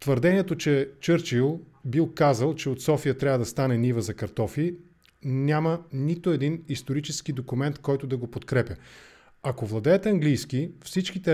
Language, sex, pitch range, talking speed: English, male, 135-170 Hz, 145 wpm